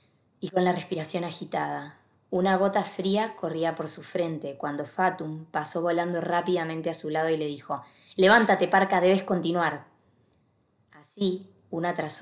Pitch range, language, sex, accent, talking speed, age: 140-180 Hz, Spanish, female, Argentinian, 145 wpm, 20-39